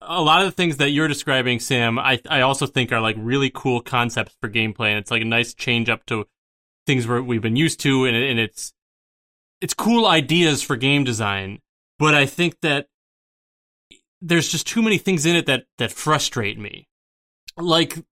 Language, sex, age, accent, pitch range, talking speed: English, male, 20-39, American, 115-155 Hz, 195 wpm